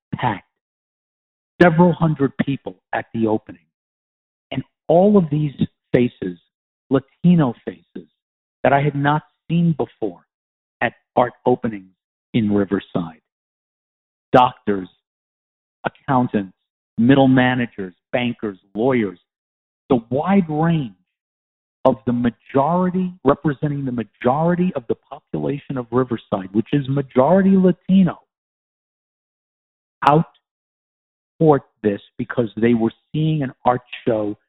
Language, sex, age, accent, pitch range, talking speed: English, male, 50-69, American, 110-150 Hz, 105 wpm